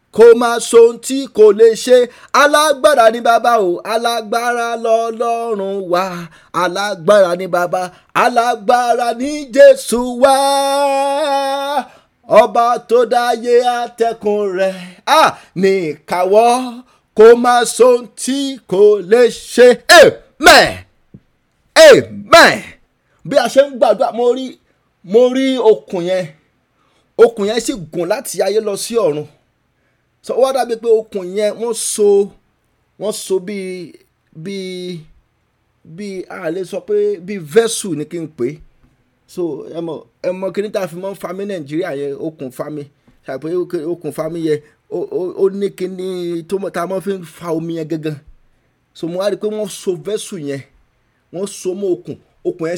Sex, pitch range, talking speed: male, 180-240 Hz, 95 wpm